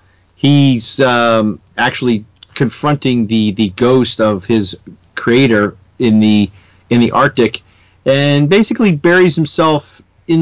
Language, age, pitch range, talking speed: English, 40-59, 105-130 Hz, 115 wpm